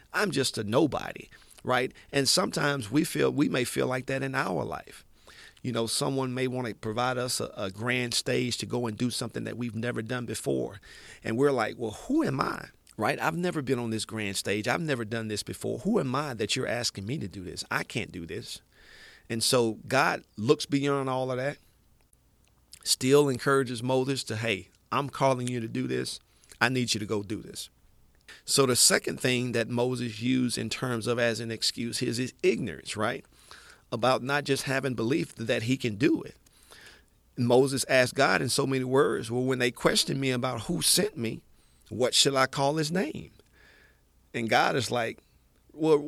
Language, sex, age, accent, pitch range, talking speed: English, male, 40-59, American, 115-140 Hz, 200 wpm